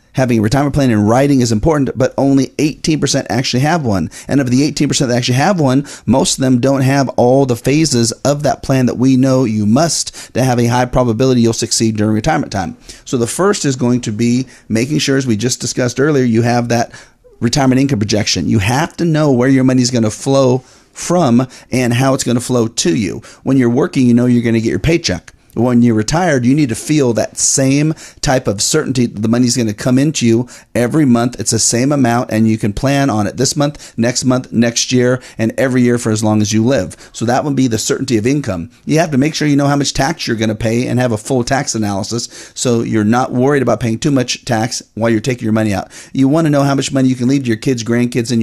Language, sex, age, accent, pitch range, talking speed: English, male, 40-59, American, 115-135 Hz, 255 wpm